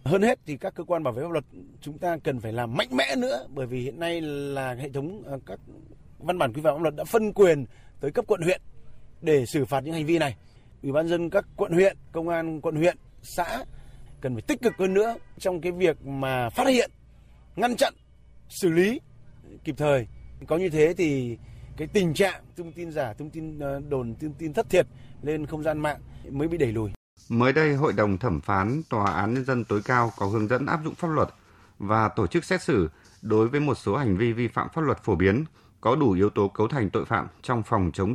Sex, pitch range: male, 110-155 Hz